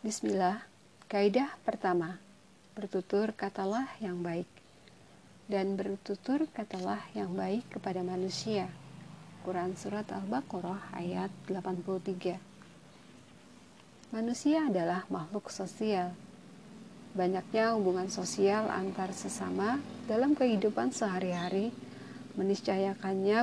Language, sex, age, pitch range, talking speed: Indonesian, female, 50-69, 180-220 Hz, 80 wpm